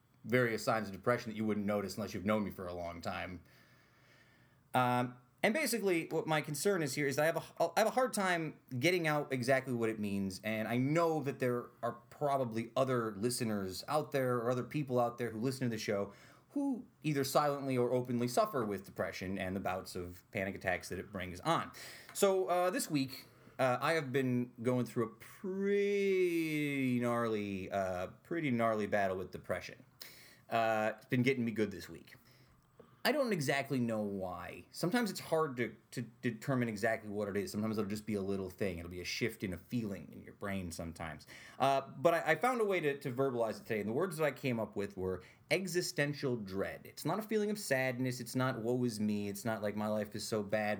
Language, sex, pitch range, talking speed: English, male, 105-145 Hz, 215 wpm